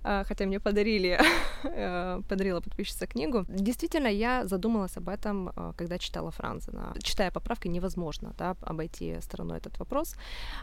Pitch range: 170-210 Hz